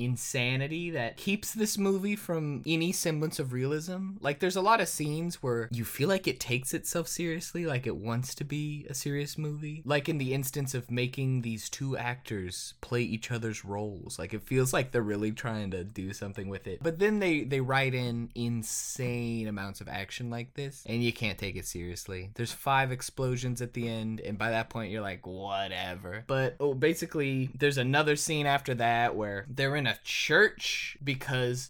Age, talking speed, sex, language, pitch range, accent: 20-39, 190 wpm, male, English, 120-170 Hz, American